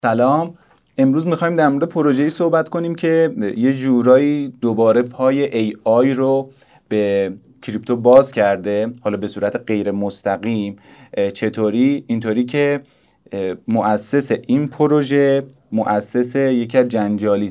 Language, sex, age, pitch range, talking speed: Persian, male, 30-49, 105-135 Hz, 115 wpm